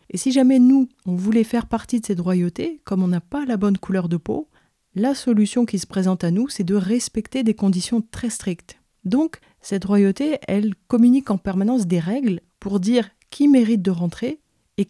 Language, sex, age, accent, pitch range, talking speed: French, female, 30-49, French, 180-230 Hz, 200 wpm